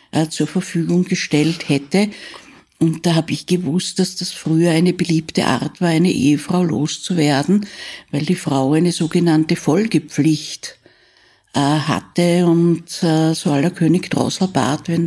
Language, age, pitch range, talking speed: German, 60-79, 155-180 Hz, 135 wpm